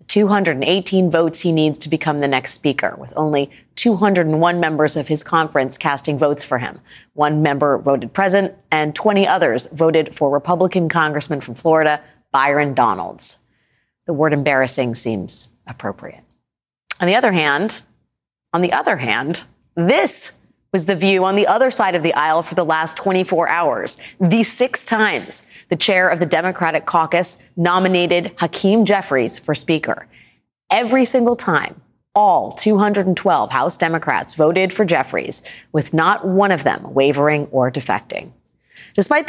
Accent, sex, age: American, female, 30-49